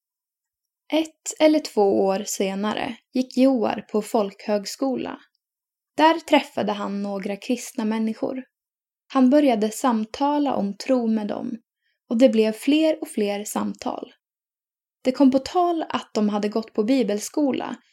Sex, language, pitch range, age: female, Swedish, 210-285 Hz, 10-29